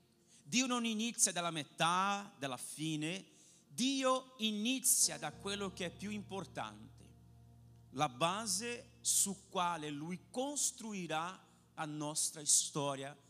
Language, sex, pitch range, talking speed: Italian, male, 155-220 Hz, 110 wpm